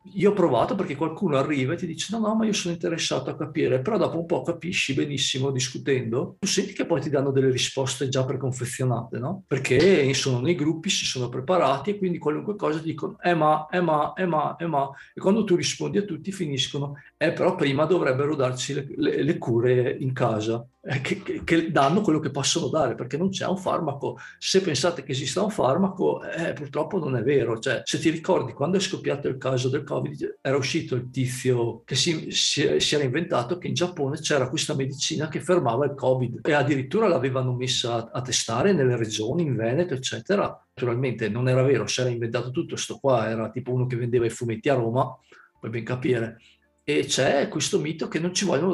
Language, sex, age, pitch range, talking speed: Italian, male, 50-69, 125-170 Hz, 210 wpm